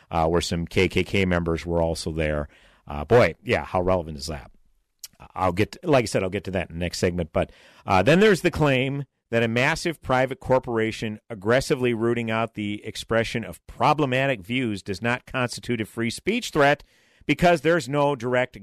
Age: 50-69